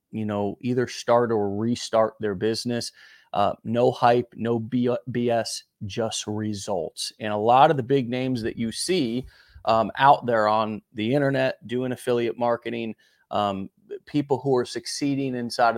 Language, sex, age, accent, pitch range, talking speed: English, male, 30-49, American, 110-135 Hz, 150 wpm